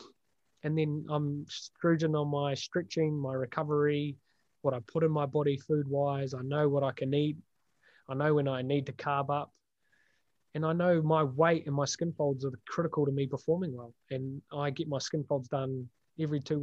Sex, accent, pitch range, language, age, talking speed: male, Australian, 135-155 Hz, English, 20-39, 195 wpm